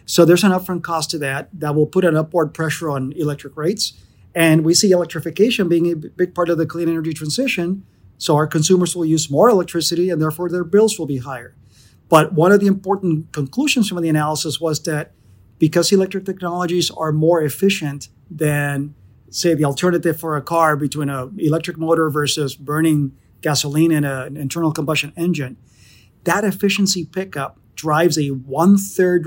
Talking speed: 175 wpm